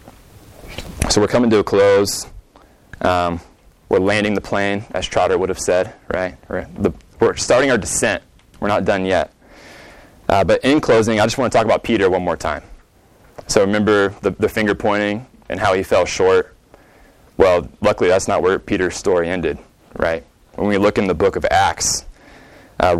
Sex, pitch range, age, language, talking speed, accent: male, 95-115 Hz, 20-39, English, 175 wpm, American